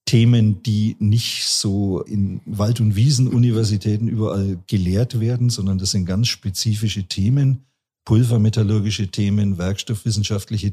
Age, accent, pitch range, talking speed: 50-69, German, 105-120 Hz, 110 wpm